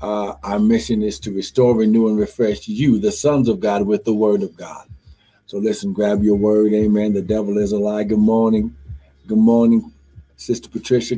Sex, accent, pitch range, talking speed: male, American, 100-120 Hz, 195 wpm